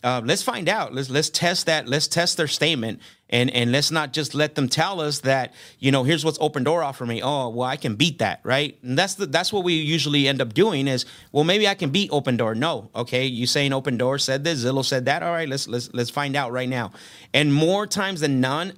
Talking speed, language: 255 wpm, English